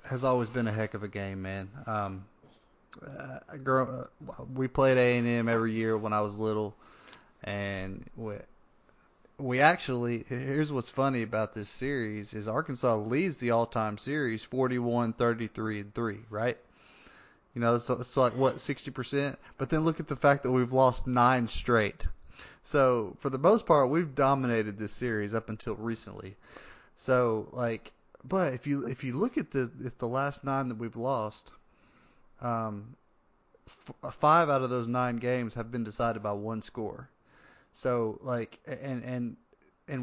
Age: 20-39